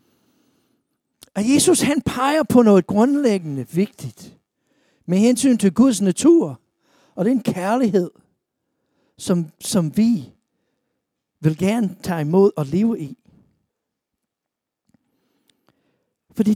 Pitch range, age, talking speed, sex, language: 175-235 Hz, 60-79, 100 wpm, male, Danish